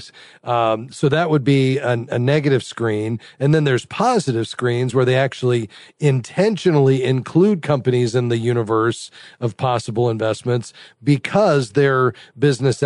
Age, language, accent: 40-59, English, American